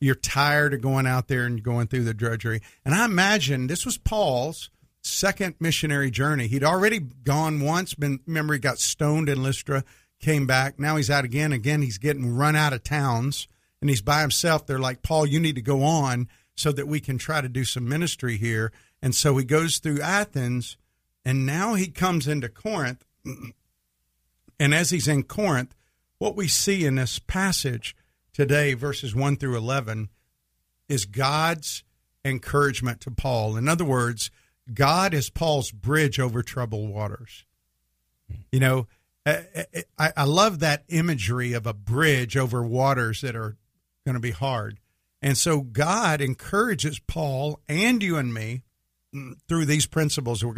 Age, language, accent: 50-69, English, American